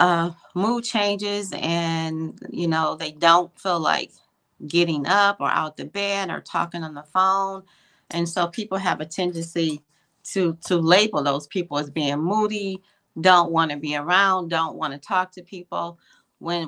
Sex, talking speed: female, 170 wpm